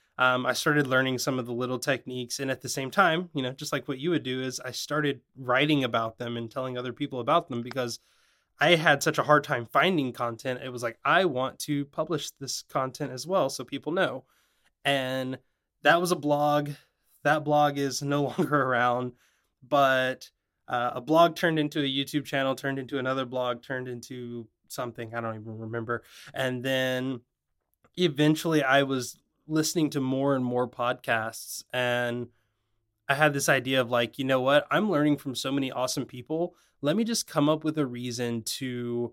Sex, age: male, 20-39